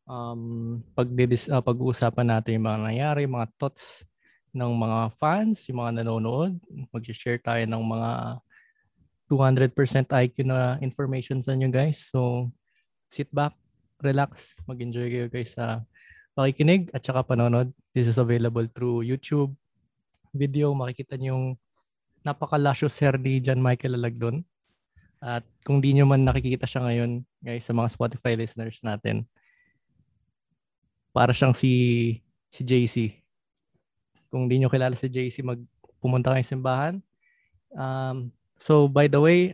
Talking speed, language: 125 wpm, Filipino